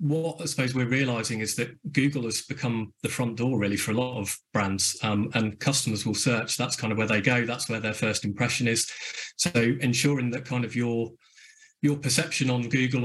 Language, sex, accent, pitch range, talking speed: English, male, British, 115-135 Hz, 210 wpm